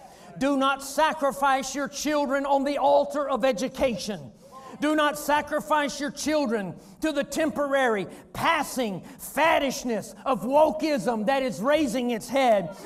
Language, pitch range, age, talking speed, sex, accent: English, 280-340 Hz, 40-59, 125 wpm, male, American